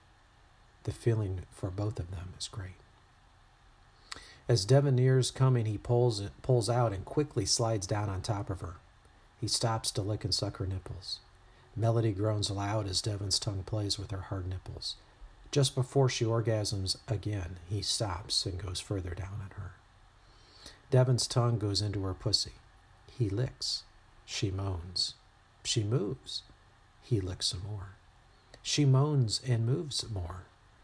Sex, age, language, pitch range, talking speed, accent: male, 50-69, English, 95-120 Hz, 150 wpm, American